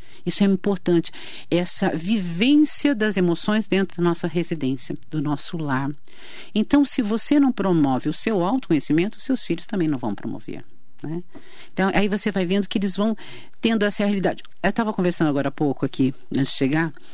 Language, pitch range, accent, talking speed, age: Portuguese, 150-200 Hz, Brazilian, 175 wpm, 50-69